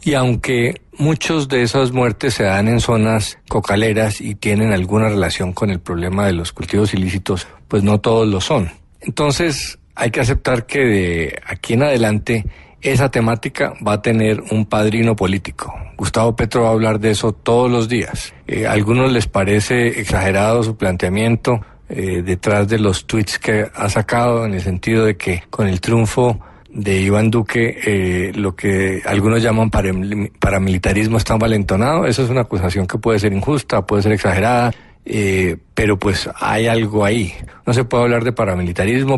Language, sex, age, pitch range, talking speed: Spanish, male, 50-69, 95-115 Hz, 170 wpm